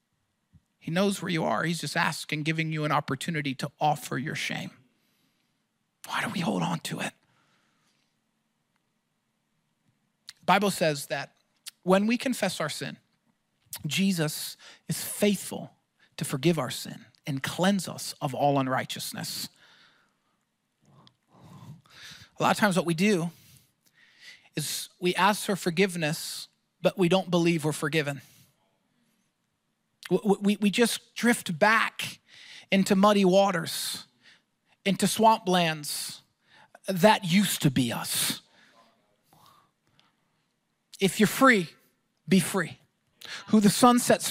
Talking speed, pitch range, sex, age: 120 wpm, 155-210 Hz, male, 40-59